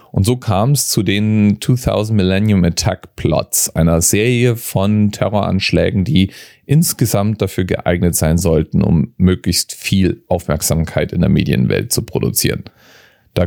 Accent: German